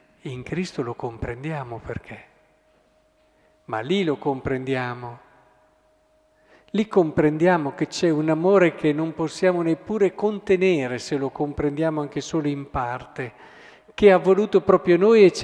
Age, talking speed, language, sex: 50-69, 130 wpm, Italian, male